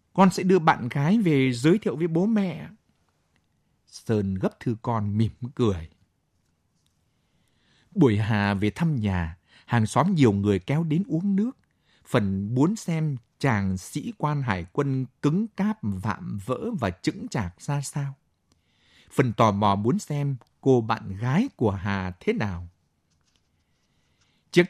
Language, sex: Vietnamese, male